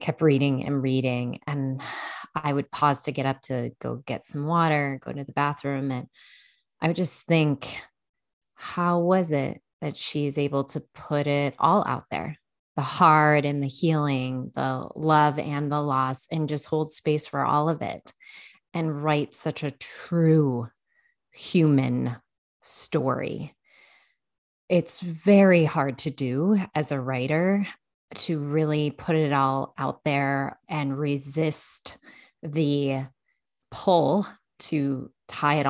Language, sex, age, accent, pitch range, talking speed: English, female, 20-39, American, 135-155 Hz, 140 wpm